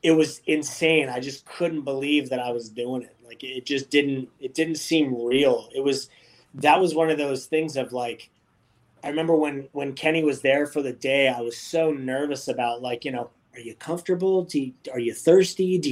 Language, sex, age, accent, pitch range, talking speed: English, male, 30-49, American, 125-155 Hz, 205 wpm